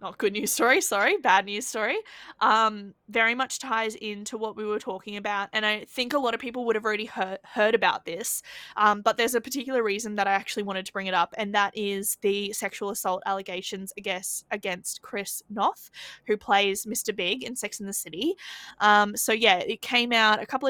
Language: English